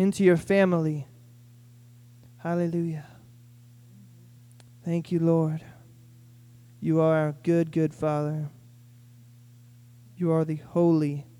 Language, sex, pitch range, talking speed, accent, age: English, male, 120-175 Hz, 90 wpm, American, 20-39